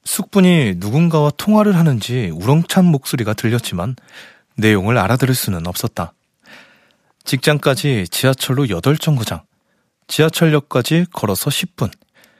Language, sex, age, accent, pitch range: Korean, male, 30-49, native, 110-165 Hz